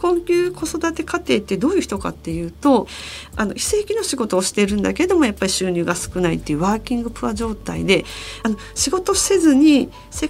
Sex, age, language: female, 40-59, Japanese